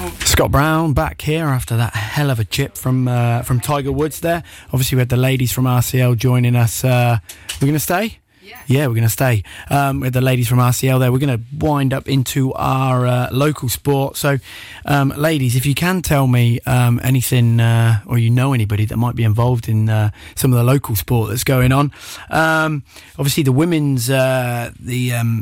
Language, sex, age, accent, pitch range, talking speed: English, male, 20-39, British, 110-130 Hz, 205 wpm